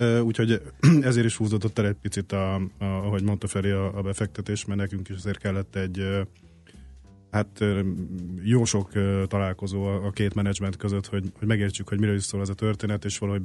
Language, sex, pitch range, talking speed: Hungarian, male, 95-105 Hz, 180 wpm